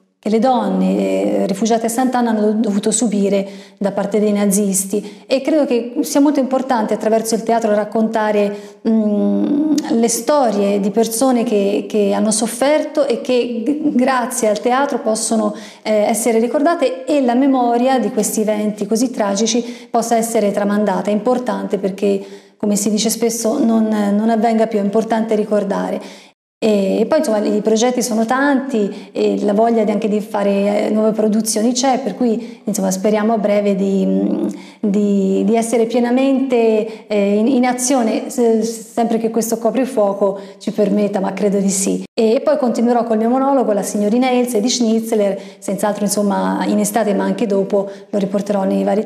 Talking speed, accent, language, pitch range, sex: 160 wpm, Italian, English, 205-240 Hz, female